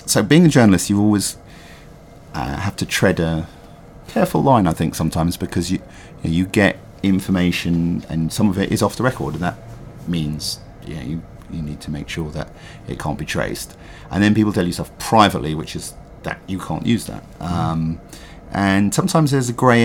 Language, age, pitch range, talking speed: English, 50-69, 85-115 Hz, 195 wpm